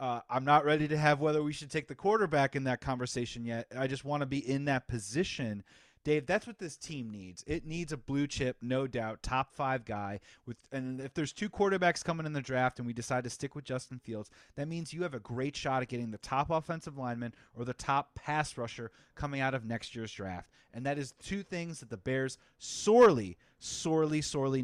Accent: American